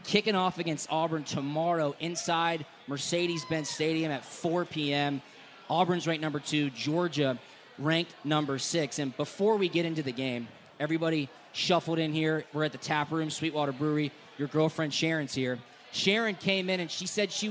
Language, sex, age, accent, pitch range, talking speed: English, male, 20-39, American, 150-175 Hz, 165 wpm